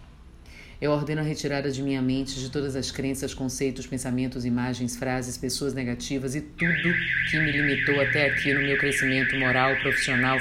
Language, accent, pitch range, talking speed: Portuguese, Brazilian, 130-145 Hz, 165 wpm